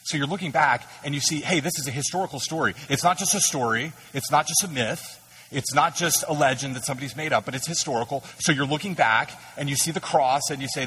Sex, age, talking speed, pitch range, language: male, 30-49, 260 wpm, 115-145 Hz, English